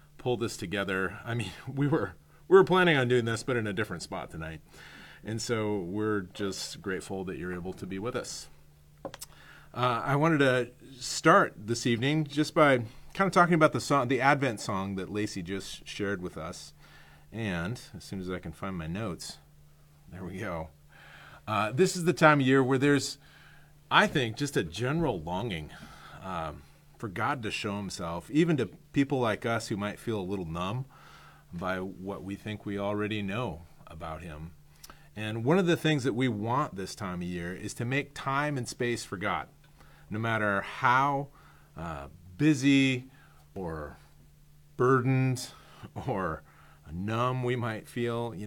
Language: English